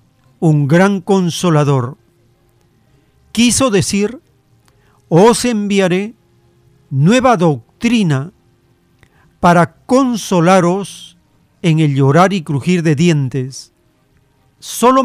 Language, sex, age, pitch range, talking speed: Spanish, male, 40-59, 140-195 Hz, 75 wpm